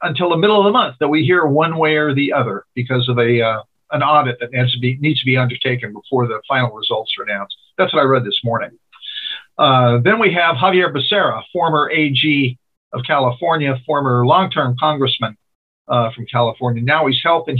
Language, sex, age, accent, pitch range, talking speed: English, male, 50-69, American, 125-150 Hz, 205 wpm